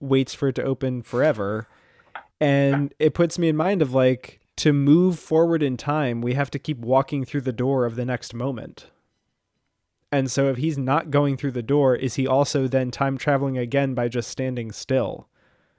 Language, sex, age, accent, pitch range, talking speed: English, male, 20-39, American, 120-140 Hz, 195 wpm